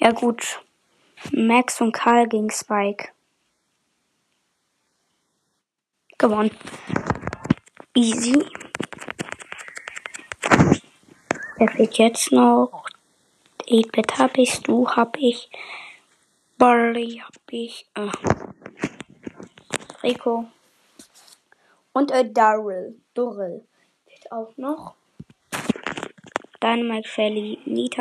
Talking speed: 80 wpm